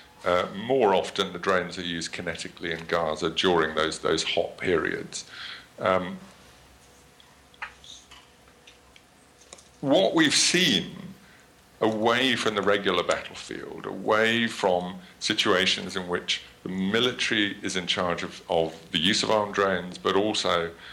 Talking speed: 125 wpm